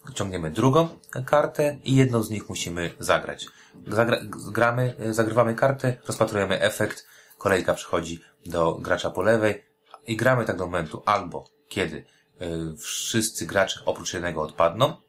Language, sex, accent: Polish, male, native